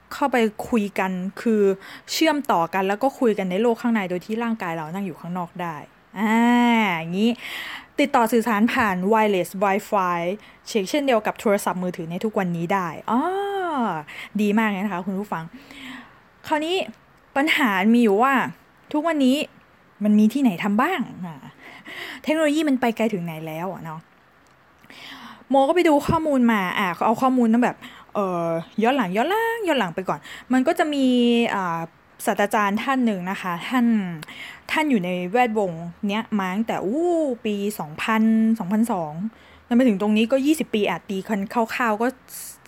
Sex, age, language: female, 20-39, Thai